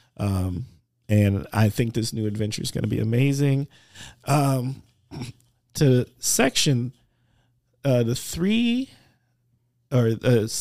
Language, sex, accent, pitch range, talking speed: English, male, American, 120-155 Hz, 115 wpm